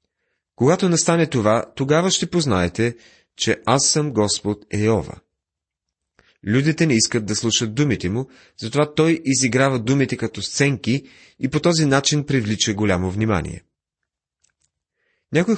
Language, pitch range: Bulgarian, 105-150 Hz